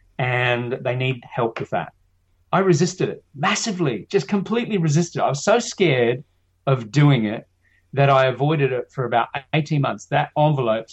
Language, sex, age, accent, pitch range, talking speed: English, male, 30-49, Australian, 115-150 Hz, 165 wpm